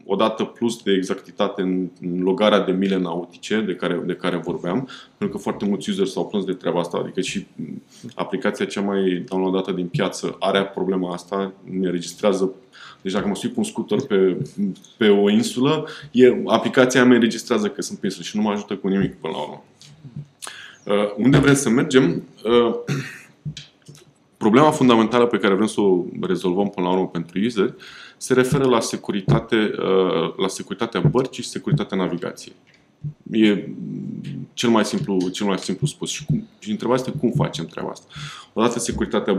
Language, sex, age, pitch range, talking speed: Romanian, male, 20-39, 95-140 Hz, 170 wpm